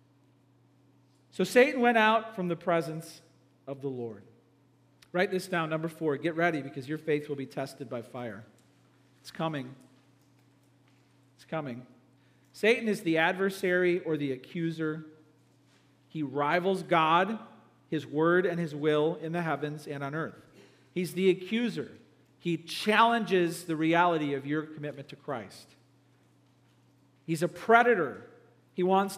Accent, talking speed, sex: American, 140 wpm, male